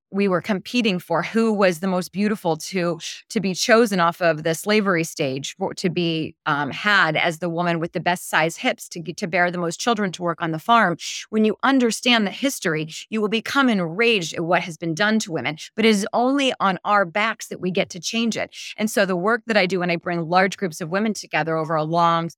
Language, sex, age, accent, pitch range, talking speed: English, female, 30-49, American, 170-215 Hz, 235 wpm